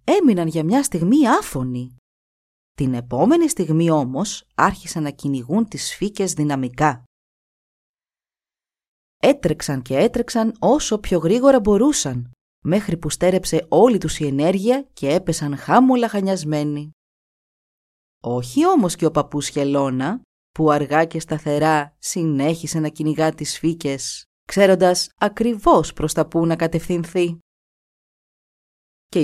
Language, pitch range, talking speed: Greek, 145-195 Hz, 115 wpm